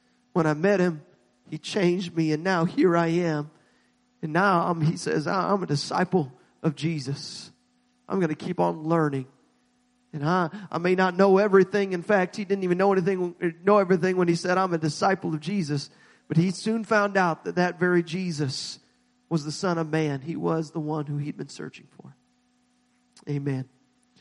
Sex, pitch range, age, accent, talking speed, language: male, 155-190 Hz, 40-59, American, 190 wpm, English